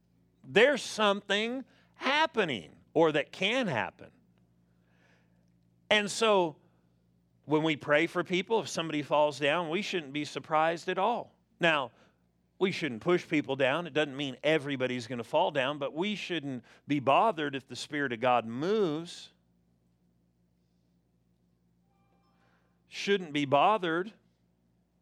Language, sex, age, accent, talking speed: English, male, 50-69, American, 125 wpm